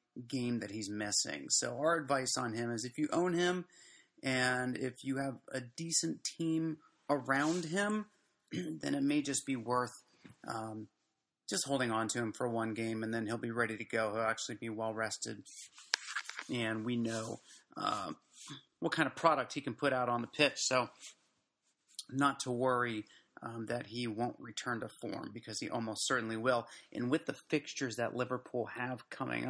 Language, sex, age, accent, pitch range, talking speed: English, male, 30-49, American, 115-135 Hz, 180 wpm